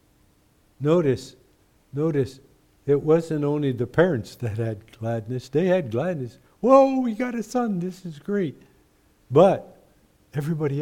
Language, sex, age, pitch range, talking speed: English, male, 60-79, 110-145 Hz, 130 wpm